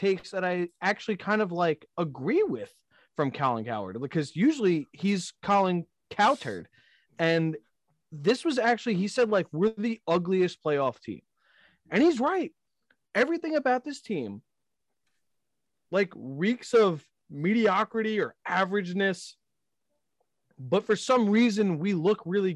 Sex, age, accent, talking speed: male, 20-39, American, 130 wpm